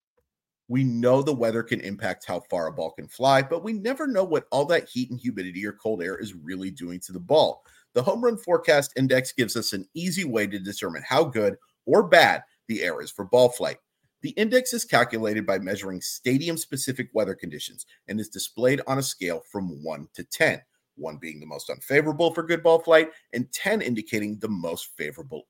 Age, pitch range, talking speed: 40-59, 110-155 Hz, 205 wpm